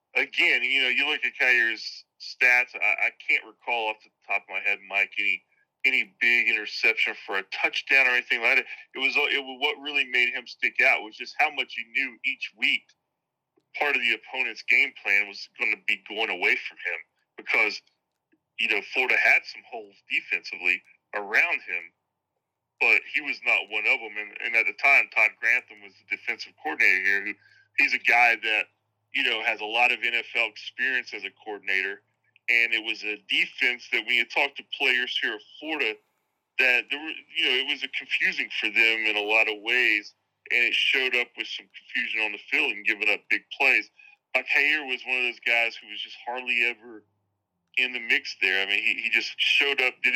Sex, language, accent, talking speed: male, English, American, 205 wpm